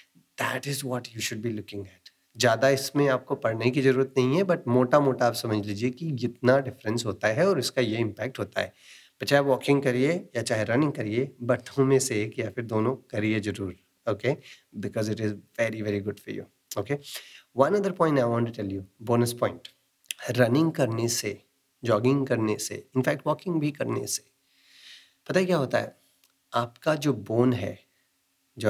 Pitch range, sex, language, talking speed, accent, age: 105-135 Hz, male, Hindi, 190 wpm, native, 30-49